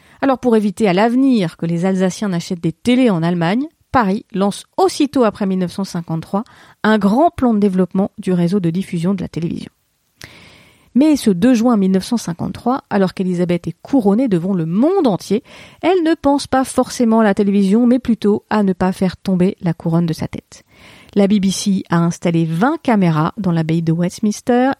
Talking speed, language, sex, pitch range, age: 175 wpm, French, female, 180-240 Hz, 40-59